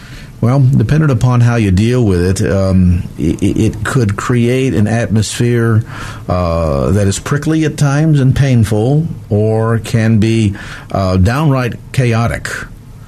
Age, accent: 50-69, American